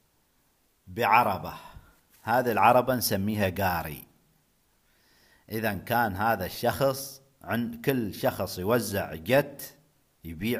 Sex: male